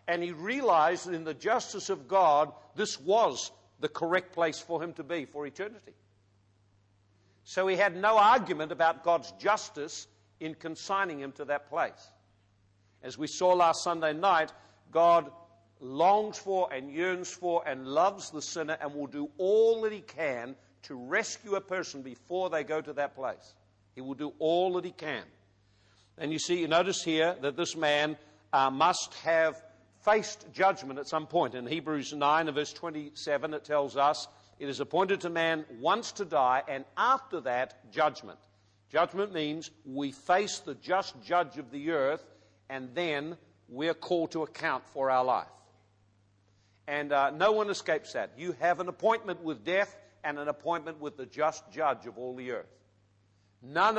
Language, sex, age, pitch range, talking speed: English, male, 50-69, 130-175 Hz, 170 wpm